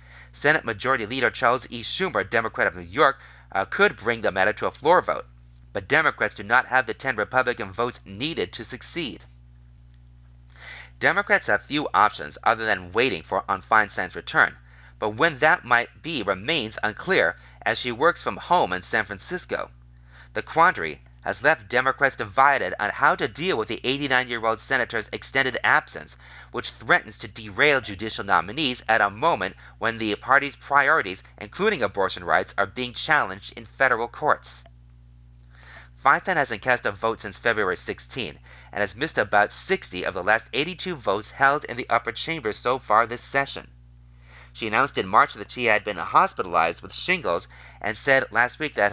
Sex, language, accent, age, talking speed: male, English, American, 30-49, 170 wpm